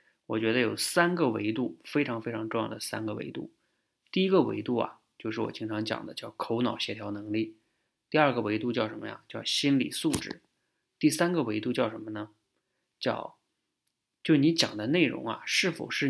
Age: 20-39